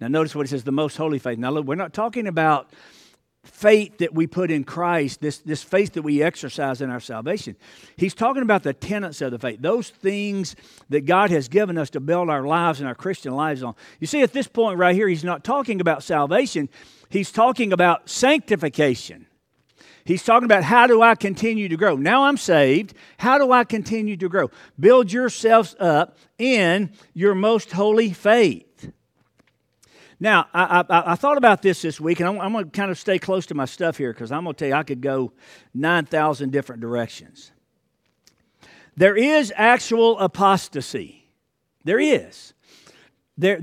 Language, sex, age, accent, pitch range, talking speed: English, male, 50-69, American, 150-210 Hz, 190 wpm